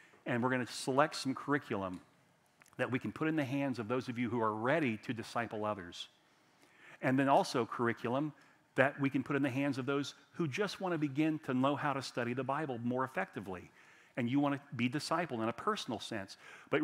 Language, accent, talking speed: English, American, 220 wpm